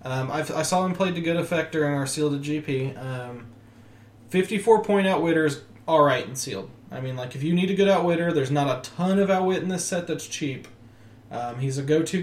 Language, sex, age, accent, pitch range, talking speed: English, male, 20-39, American, 130-180 Hz, 225 wpm